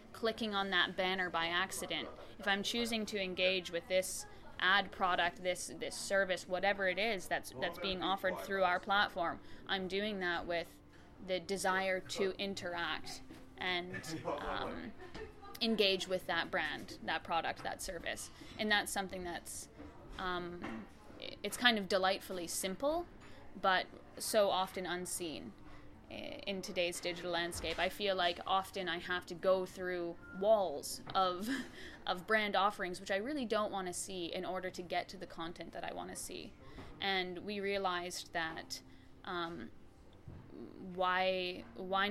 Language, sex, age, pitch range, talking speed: English, female, 20-39, 180-205 Hz, 150 wpm